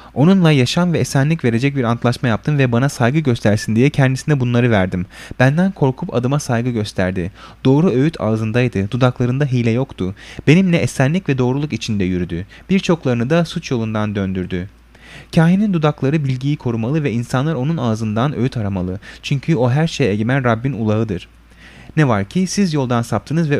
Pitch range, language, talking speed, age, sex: 105-145 Hz, Turkish, 160 wpm, 30-49, male